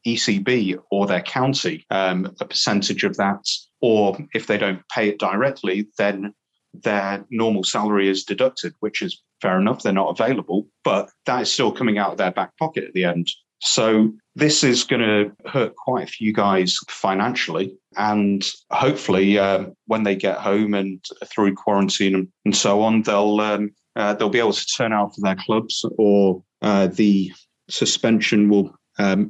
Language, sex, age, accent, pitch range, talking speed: English, male, 30-49, British, 95-110 Hz, 170 wpm